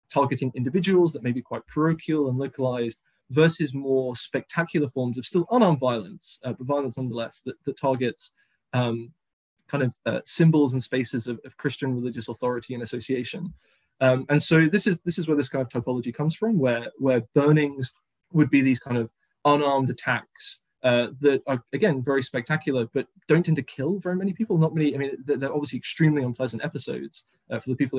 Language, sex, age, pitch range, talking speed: English, male, 20-39, 125-150 Hz, 195 wpm